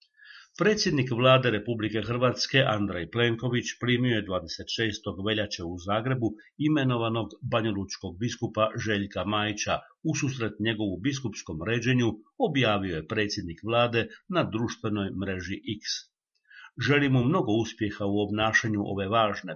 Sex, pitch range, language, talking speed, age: male, 105-125 Hz, Croatian, 115 wpm, 50-69